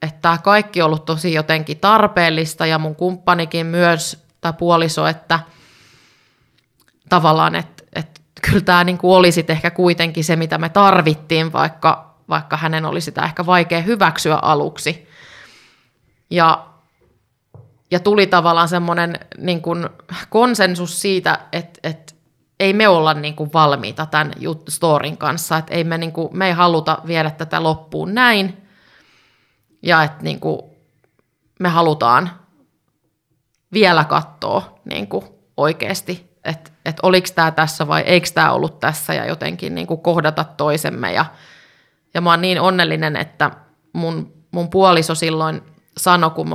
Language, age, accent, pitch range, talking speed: Finnish, 20-39, native, 155-175 Hz, 130 wpm